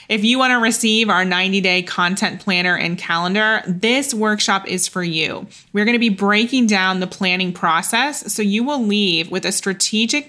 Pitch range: 180-220 Hz